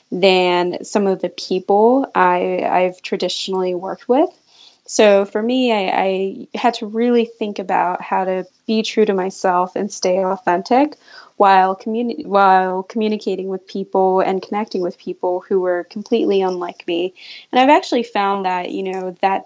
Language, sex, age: English, female, 20-39